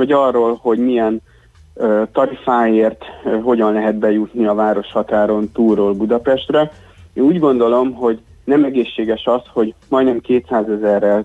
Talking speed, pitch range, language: 135 wpm, 100-120 Hz, Hungarian